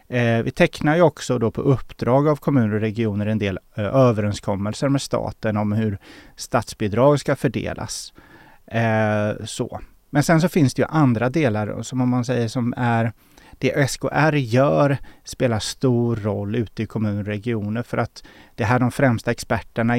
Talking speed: 175 wpm